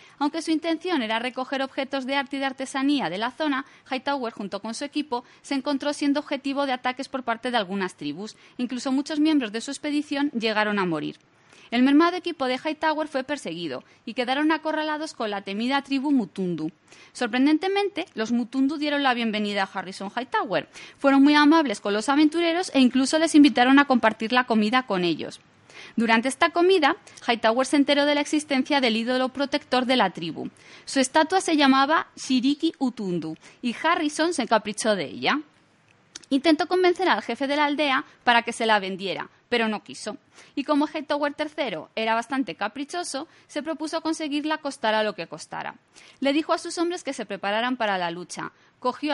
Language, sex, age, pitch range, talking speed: Spanish, female, 20-39, 225-295 Hz, 180 wpm